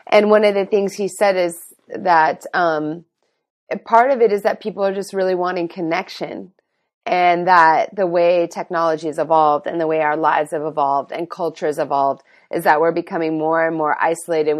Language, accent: English, American